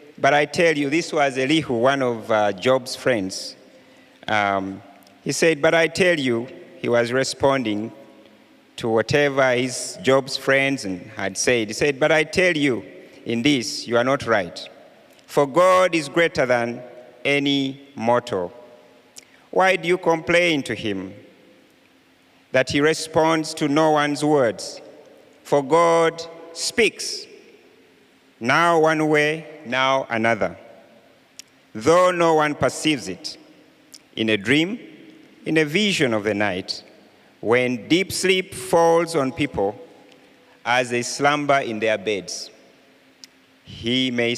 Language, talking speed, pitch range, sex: English, 130 wpm, 120-160 Hz, male